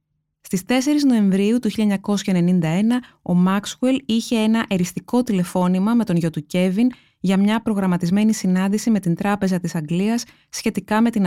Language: Greek